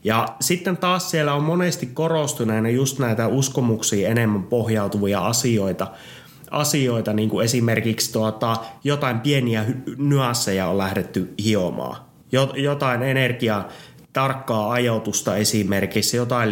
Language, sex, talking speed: Finnish, male, 105 wpm